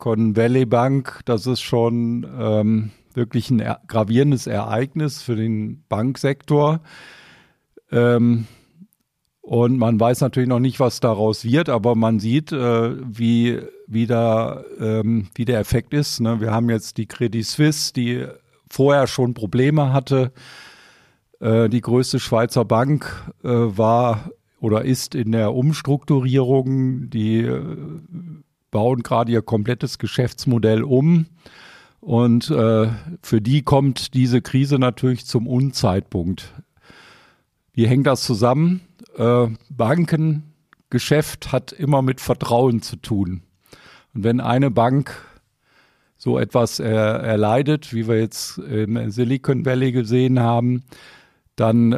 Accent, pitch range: German, 115-135 Hz